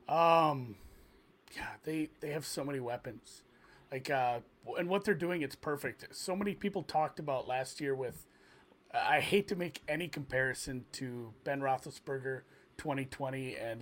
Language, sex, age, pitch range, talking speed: English, male, 30-49, 135-185 Hz, 150 wpm